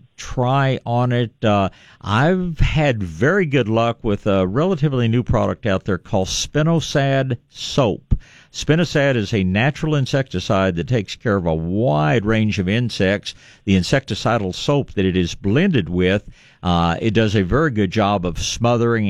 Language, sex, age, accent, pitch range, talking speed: English, male, 50-69, American, 95-130 Hz, 155 wpm